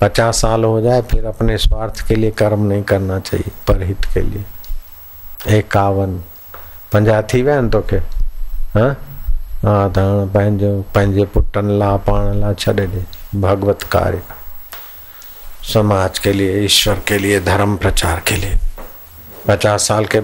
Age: 50-69